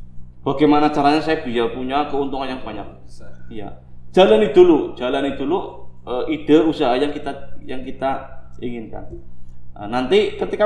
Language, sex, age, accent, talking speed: Indonesian, male, 20-39, native, 135 wpm